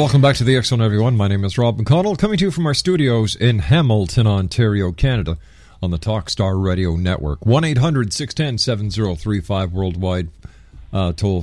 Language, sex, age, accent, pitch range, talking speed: English, male, 50-69, American, 90-125 Hz, 180 wpm